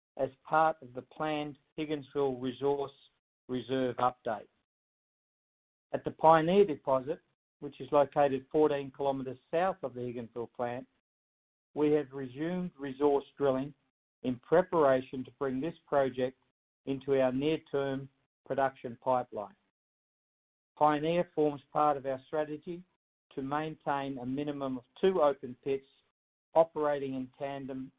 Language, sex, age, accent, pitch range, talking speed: English, male, 50-69, Australian, 130-160 Hz, 120 wpm